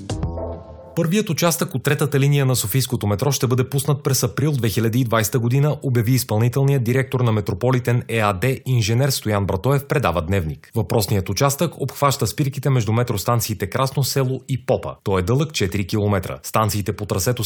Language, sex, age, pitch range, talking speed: Bulgarian, male, 30-49, 105-140 Hz, 150 wpm